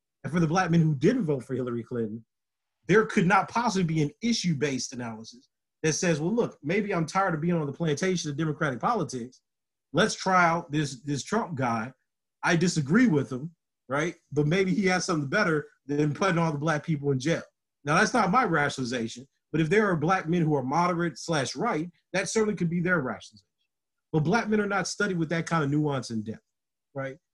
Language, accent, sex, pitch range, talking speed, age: English, American, male, 145-190 Hz, 210 wpm, 40-59